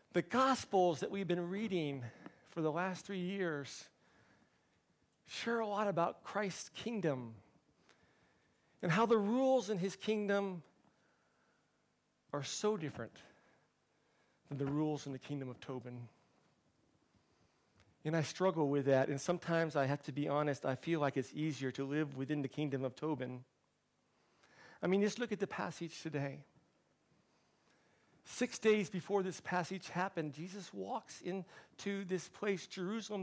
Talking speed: 145 wpm